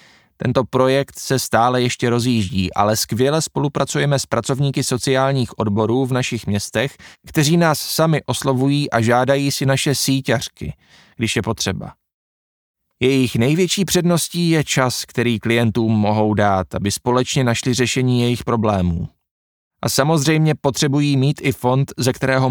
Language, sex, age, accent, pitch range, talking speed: Czech, male, 20-39, native, 115-140 Hz, 135 wpm